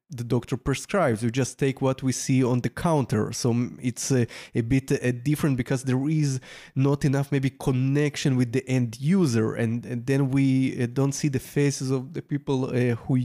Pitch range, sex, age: 120-145 Hz, male, 20-39